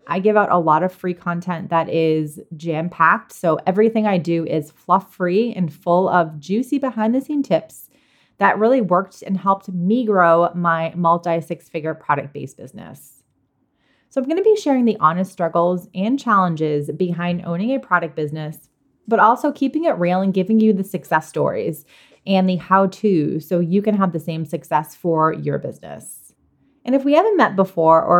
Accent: American